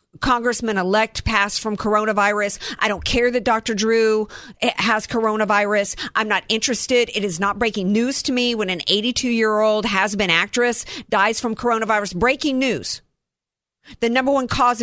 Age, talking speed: 50-69, 145 wpm